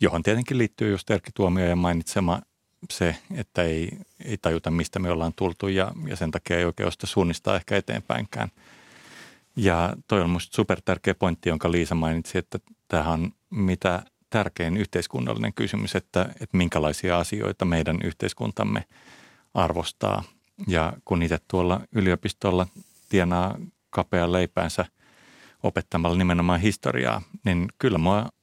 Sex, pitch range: male, 85-100 Hz